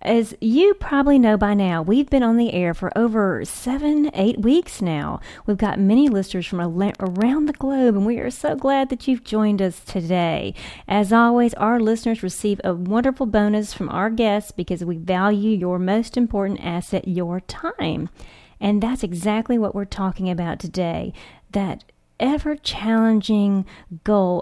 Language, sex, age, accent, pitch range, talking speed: English, female, 40-59, American, 190-240 Hz, 160 wpm